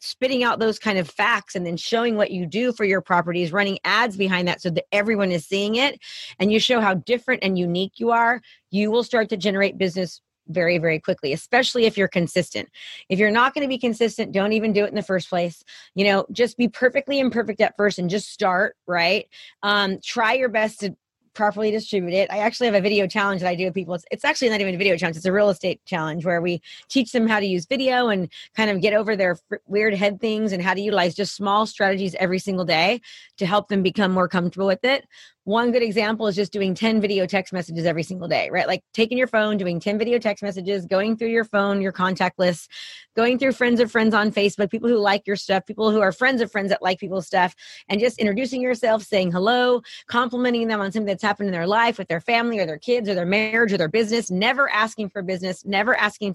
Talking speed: 240 wpm